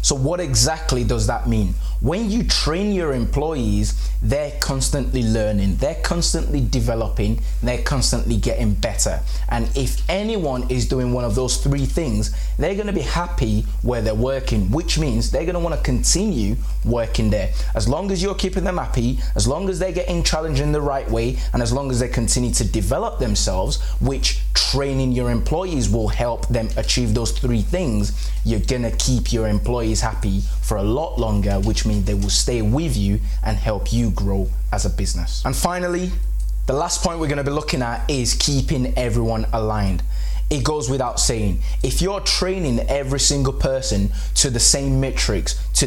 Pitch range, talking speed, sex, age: 105-140 Hz, 180 wpm, male, 20-39